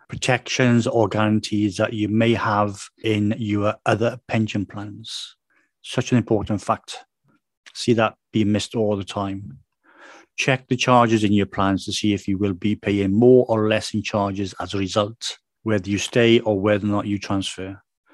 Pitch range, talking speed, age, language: 105-115 Hz, 175 wpm, 40-59, English